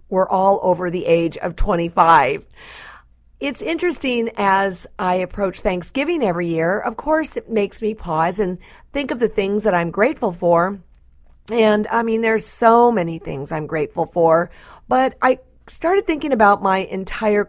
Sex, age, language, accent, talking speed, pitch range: female, 50-69, English, American, 160 wpm, 180-235 Hz